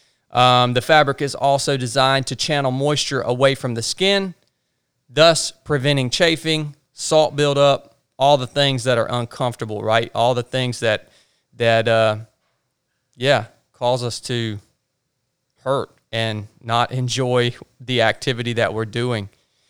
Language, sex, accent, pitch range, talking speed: English, male, American, 120-145 Hz, 135 wpm